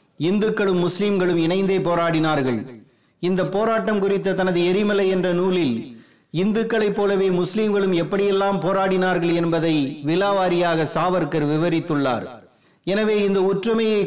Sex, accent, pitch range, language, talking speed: male, native, 165-195 Hz, Tamil, 100 wpm